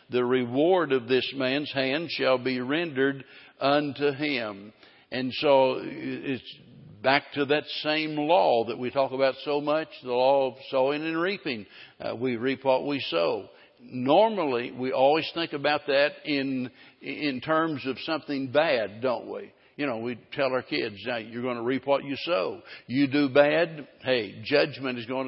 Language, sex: English, male